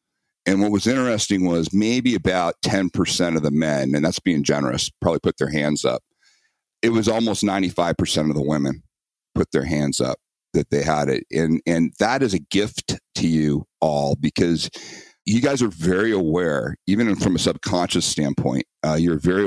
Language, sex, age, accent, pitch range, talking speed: English, male, 50-69, American, 80-100 Hz, 180 wpm